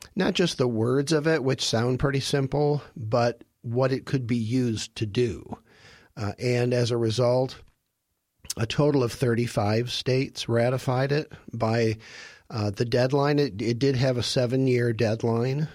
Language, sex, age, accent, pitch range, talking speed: English, male, 50-69, American, 110-130 Hz, 155 wpm